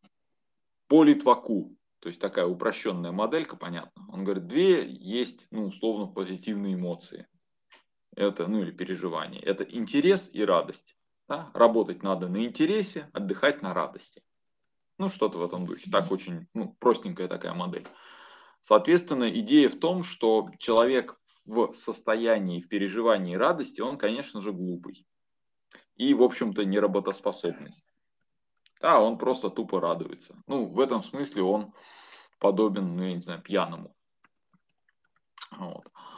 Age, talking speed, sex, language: 20-39, 130 wpm, male, Russian